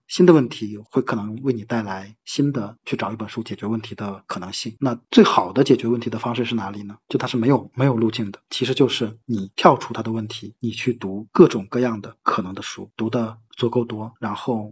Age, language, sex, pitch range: 20-39, Chinese, male, 105-125 Hz